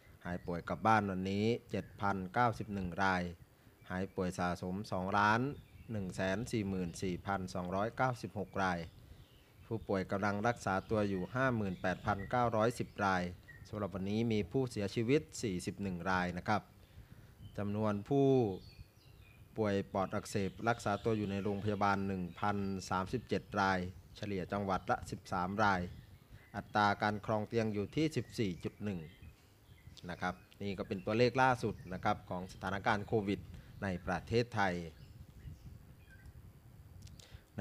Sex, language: male, Thai